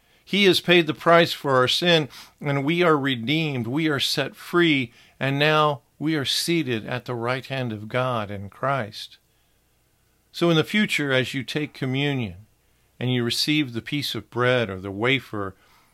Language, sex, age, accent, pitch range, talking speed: English, male, 50-69, American, 110-140 Hz, 175 wpm